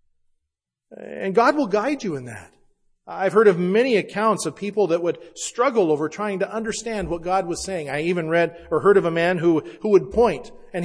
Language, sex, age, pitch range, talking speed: English, male, 40-59, 150-215 Hz, 210 wpm